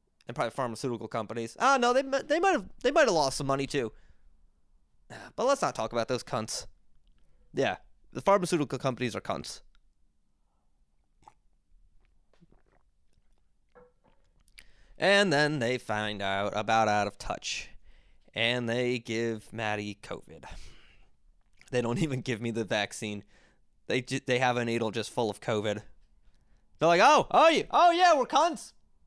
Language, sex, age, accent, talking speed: English, male, 20-39, American, 145 wpm